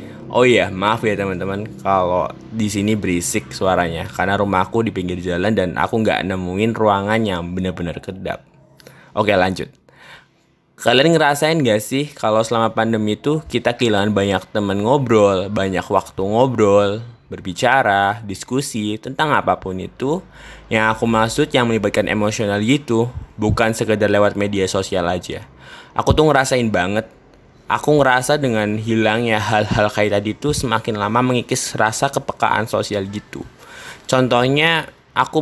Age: 10-29